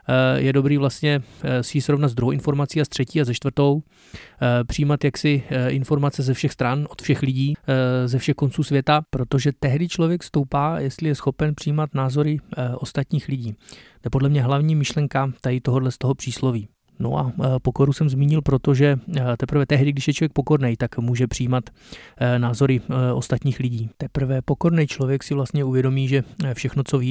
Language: Czech